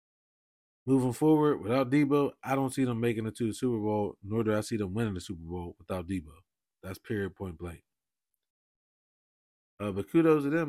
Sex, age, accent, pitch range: male, 20-39, American, 100-135 Hz